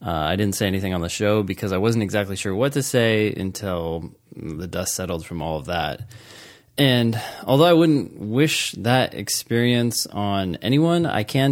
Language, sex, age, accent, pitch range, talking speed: English, male, 20-39, American, 90-115 Hz, 180 wpm